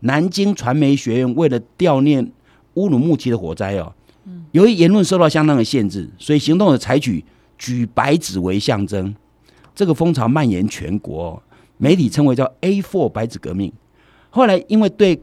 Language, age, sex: Chinese, 50-69, male